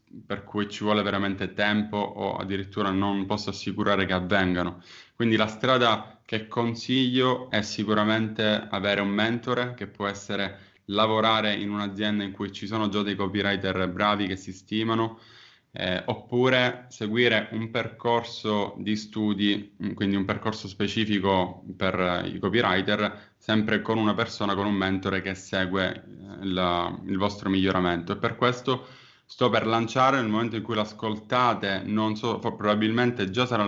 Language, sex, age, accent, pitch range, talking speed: Italian, male, 10-29, native, 100-115 Hz, 150 wpm